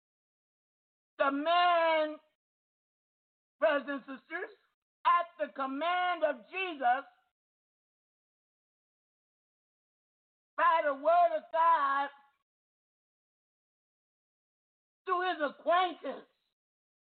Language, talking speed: English, 65 wpm